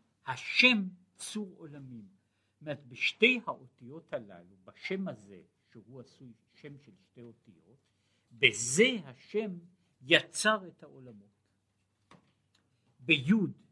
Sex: male